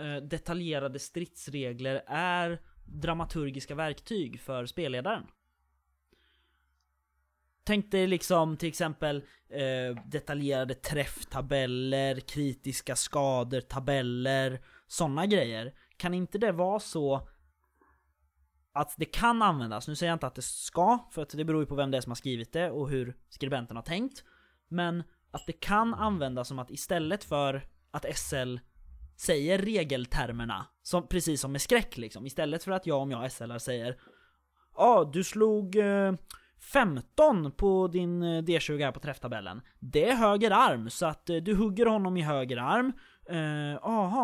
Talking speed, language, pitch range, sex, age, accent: 145 wpm, Swedish, 130-180 Hz, male, 20-39, native